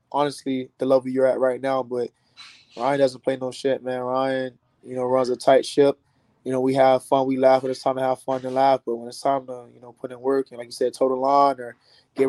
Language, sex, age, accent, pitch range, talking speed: English, male, 20-39, American, 125-135 Hz, 265 wpm